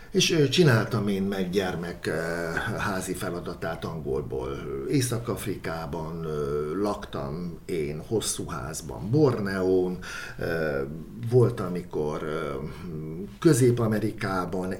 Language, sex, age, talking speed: Hungarian, male, 60-79, 70 wpm